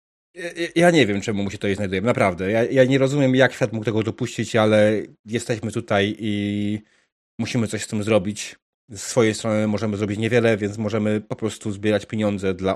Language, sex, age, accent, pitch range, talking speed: Polish, male, 30-49, native, 100-135 Hz, 190 wpm